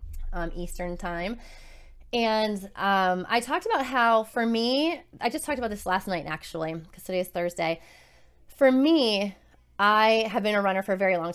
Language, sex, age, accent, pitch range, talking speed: English, female, 20-39, American, 175-210 Hz, 180 wpm